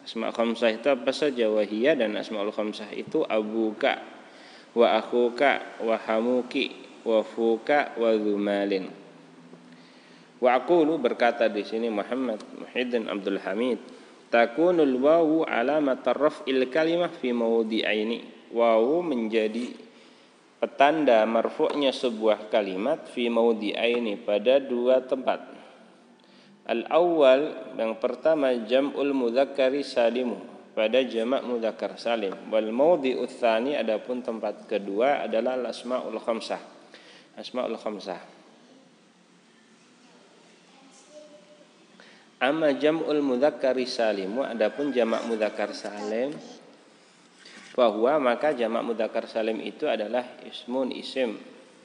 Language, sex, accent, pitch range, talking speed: Indonesian, male, native, 110-135 Hz, 95 wpm